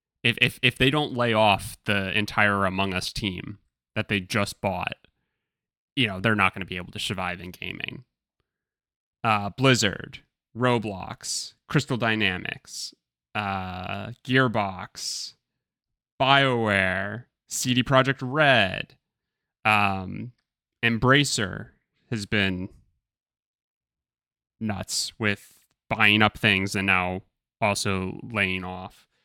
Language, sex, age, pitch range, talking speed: English, male, 20-39, 95-115 Hz, 110 wpm